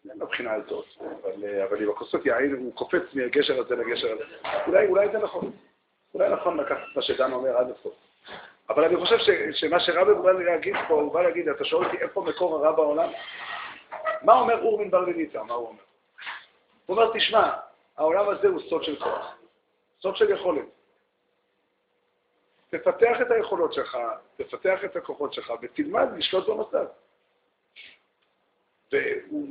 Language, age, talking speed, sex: Hebrew, 50-69, 160 wpm, male